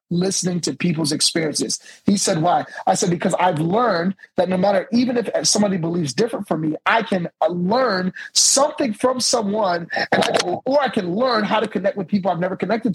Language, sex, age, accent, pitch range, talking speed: English, male, 30-49, American, 180-225 Hz, 185 wpm